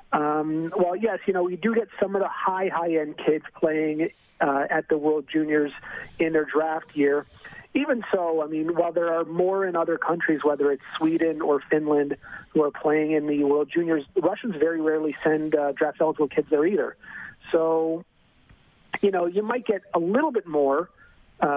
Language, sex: English, male